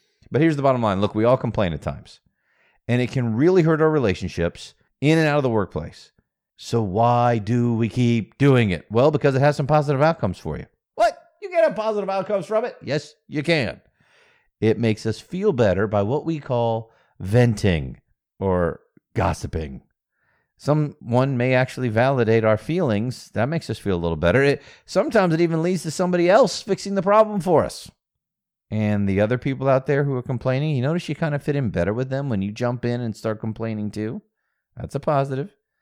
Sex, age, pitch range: male, 40-59, 110-155 Hz